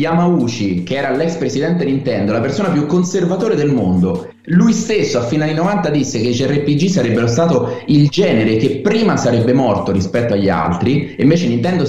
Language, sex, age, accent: Italian, male, 30-49, native